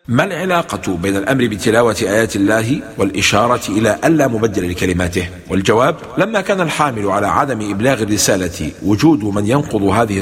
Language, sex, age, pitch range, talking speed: English, male, 50-69, 105-155 Hz, 145 wpm